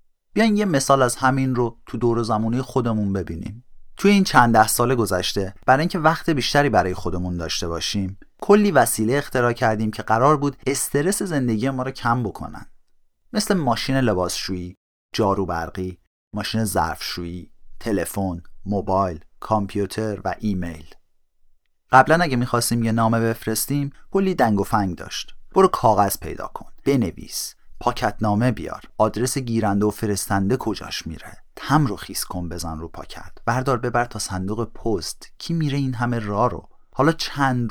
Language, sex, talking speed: Persian, male, 150 wpm